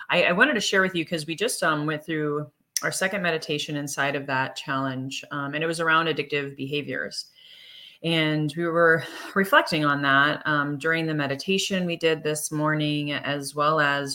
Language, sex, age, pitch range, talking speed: English, female, 30-49, 140-175 Hz, 185 wpm